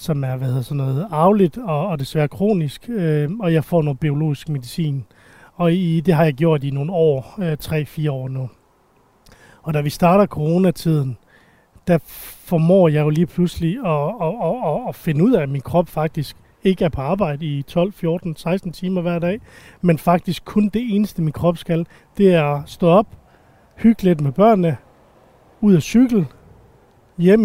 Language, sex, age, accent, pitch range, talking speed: Danish, male, 30-49, native, 150-185 Hz, 175 wpm